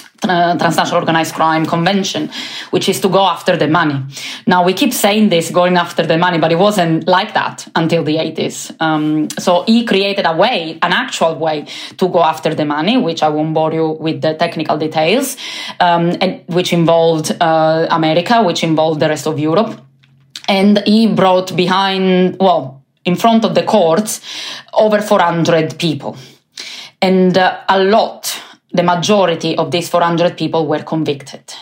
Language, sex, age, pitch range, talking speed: English, female, 20-39, 160-185 Hz, 170 wpm